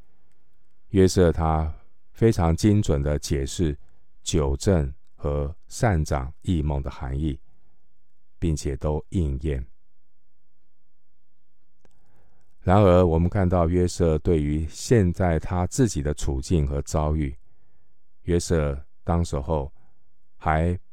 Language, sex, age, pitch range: Chinese, male, 50-69, 70-85 Hz